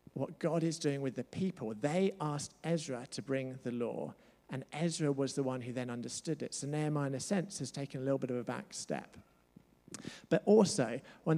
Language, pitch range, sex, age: English, 120-155 Hz, male, 50-69